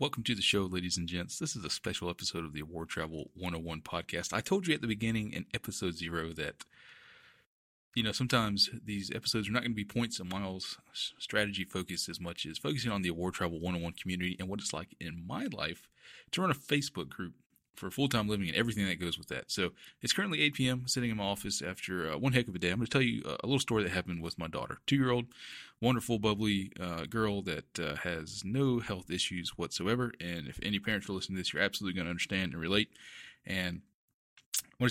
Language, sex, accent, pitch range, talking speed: English, male, American, 90-115 Hz, 230 wpm